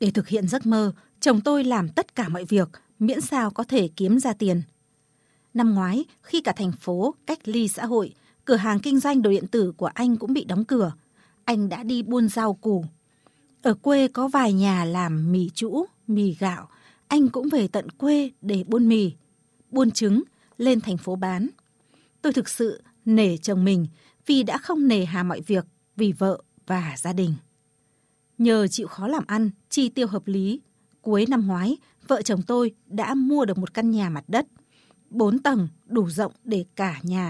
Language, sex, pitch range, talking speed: Vietnamese, female, 185-245 Hz, 195 wpm